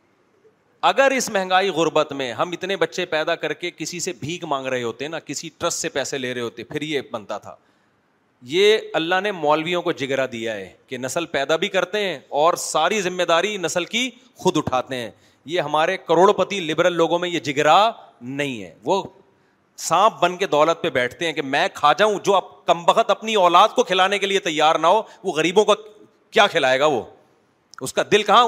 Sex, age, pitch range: male, 30-49, 165-220 Hz